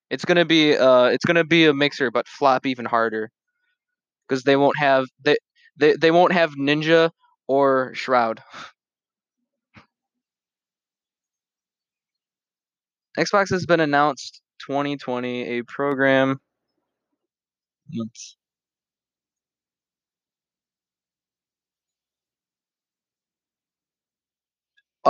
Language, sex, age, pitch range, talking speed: English, male, 20-39, 110-145 Hz, 70 wpm